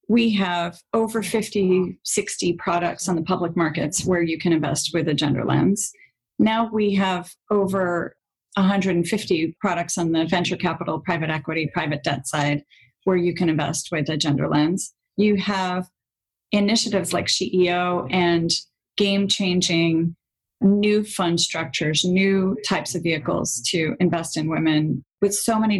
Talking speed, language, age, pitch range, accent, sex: 145 wpm, English, 40-59, 160-195 Hz, American, female